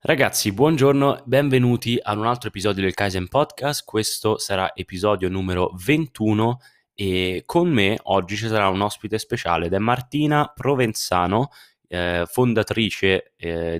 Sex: male